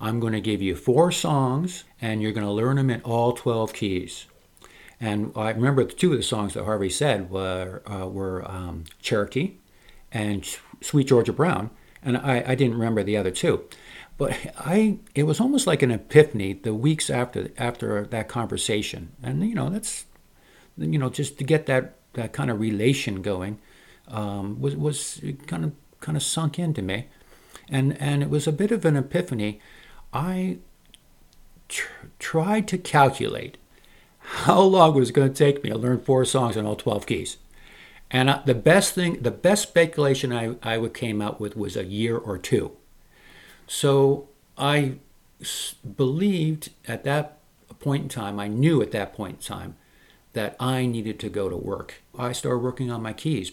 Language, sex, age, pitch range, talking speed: English, male, 50-69, 105-145 Hz, 180 wpm